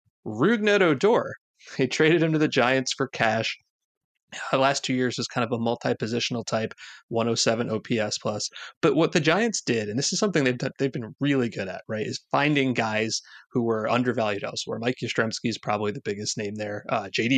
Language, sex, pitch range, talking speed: English, male, 120-150 Hz, 200 wpm